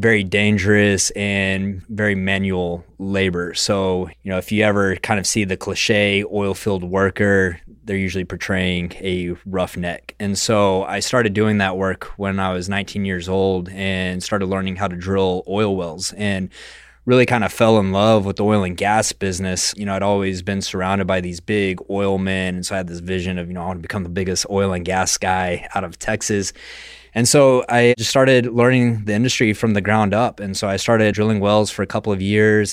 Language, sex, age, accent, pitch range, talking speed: English, male, 20-39, American, 95-105 Hz, 215 wpm